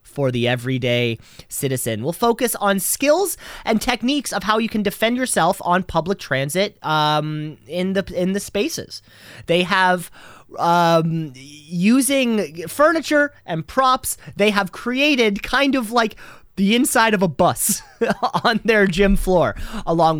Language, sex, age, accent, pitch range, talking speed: English, male, 30-49, American, 165-215 Hz, 145 wpm